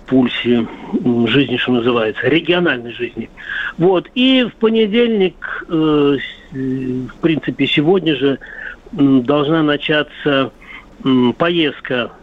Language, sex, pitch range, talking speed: Russian, male, 130-155 Hz, 85 wpm